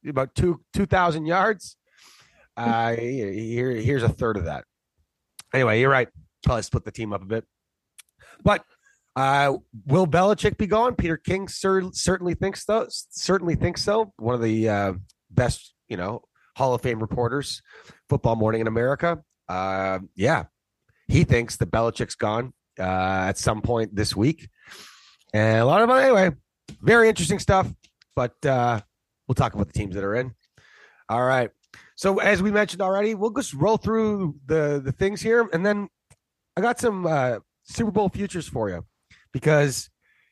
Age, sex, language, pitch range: 30-49, male, English, 110-180 Hz